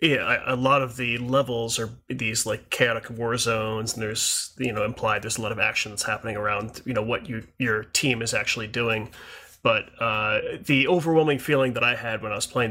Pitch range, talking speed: 110-130 Hz, 215 wpm